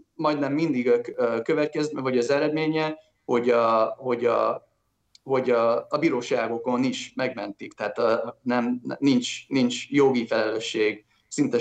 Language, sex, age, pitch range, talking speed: Hungarian, male, 30-49, 120-150 Hz, 125 wpm